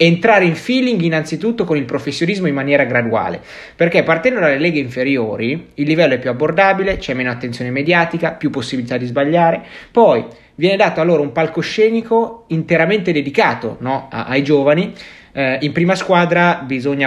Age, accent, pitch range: 30-49, native, 125-165 Hz